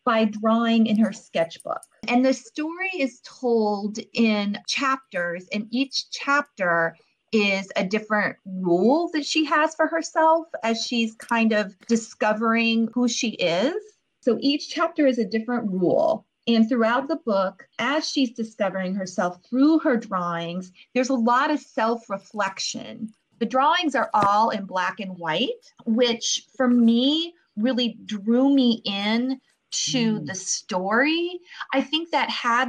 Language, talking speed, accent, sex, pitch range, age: English, 140 wpm, American, female, 195-260 Hz, 30-49